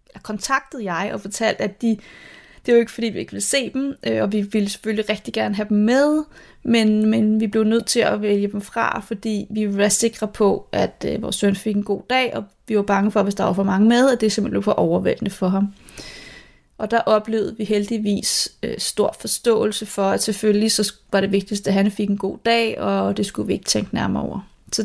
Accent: native